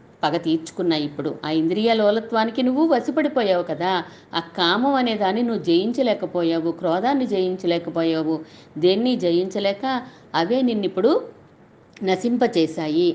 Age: 50-69